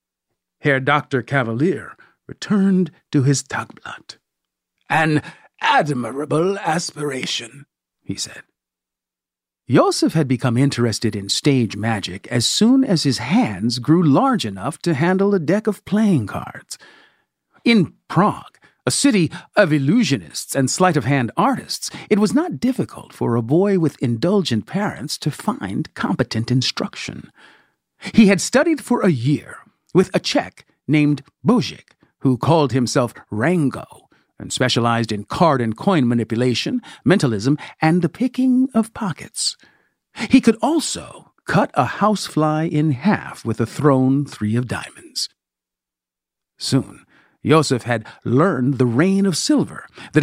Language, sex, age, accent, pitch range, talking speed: English, male, 50-69, American, 125-195 Hz, 125 wpm